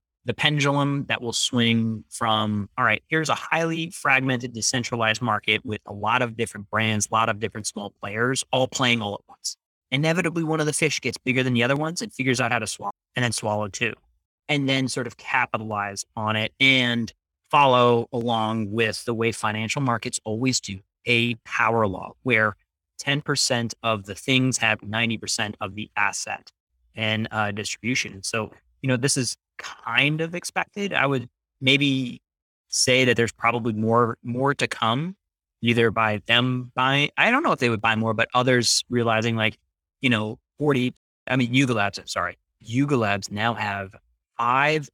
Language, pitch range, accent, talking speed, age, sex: English, 105-130 Hz, American, 180 wpm, 30-49, male